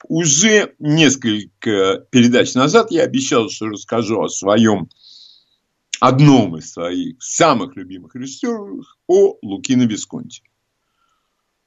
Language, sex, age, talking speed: Russian, male, 60-79, 95 wpm